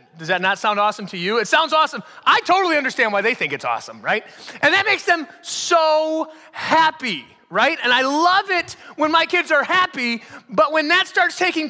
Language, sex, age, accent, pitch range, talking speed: English, male, 30-49, American, 185-290 Hz, 205 wpm